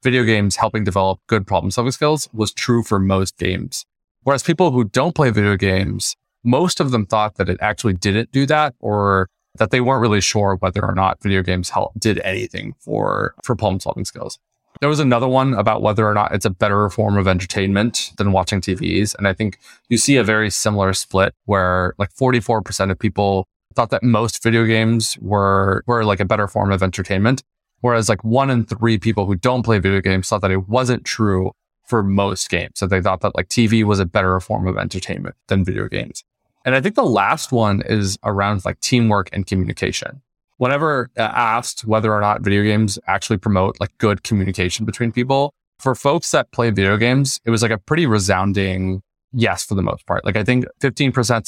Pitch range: 95-120 Hz